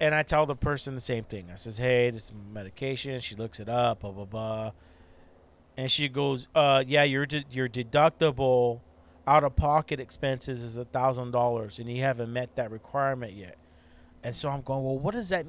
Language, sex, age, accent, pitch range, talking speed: English, male, 40-59, American, 105-145 Hz, 185 wpm